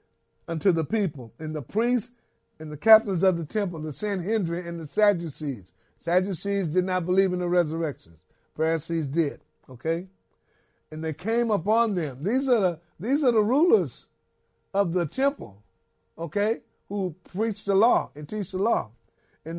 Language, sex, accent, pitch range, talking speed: English, male, American, 160-215 Hz, 160 wpm